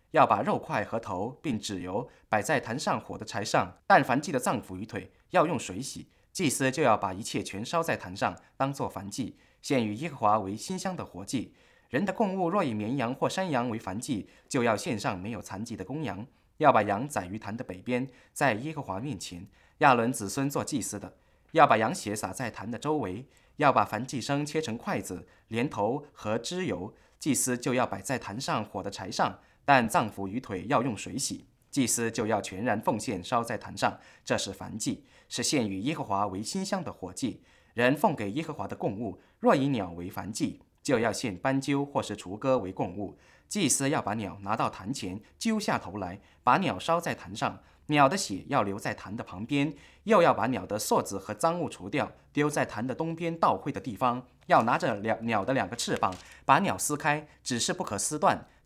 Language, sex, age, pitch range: English, male, 20-39, 100-140 Hz